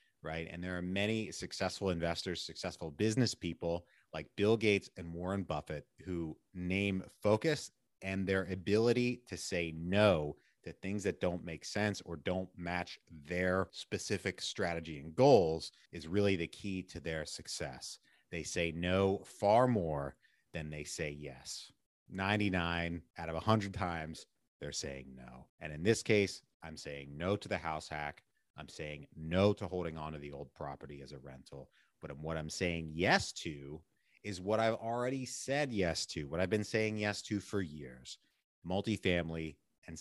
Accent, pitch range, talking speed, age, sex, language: American, 80-100 Hz, 165 wpm, 30-49, male, English